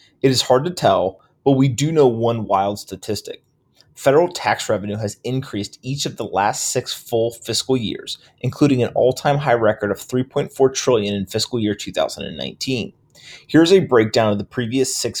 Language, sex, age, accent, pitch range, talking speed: English, male, 30-49, American, 110-135 Hz, 175 wpm